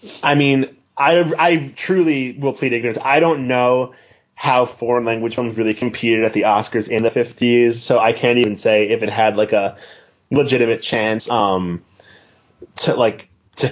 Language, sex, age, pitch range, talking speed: English, male, 20-39, 120-160 Hz, 170 wpm